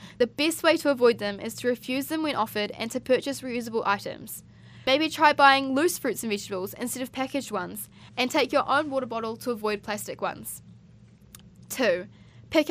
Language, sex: English, female